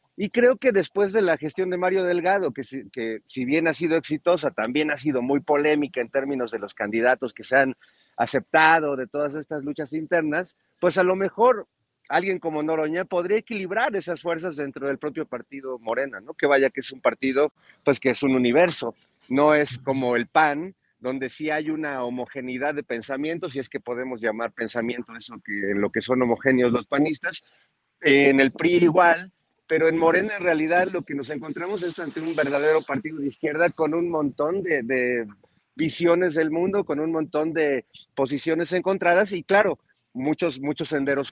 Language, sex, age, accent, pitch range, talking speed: Spanish, male, 50-69, Mexican, 135-170 Hz, 190 wpm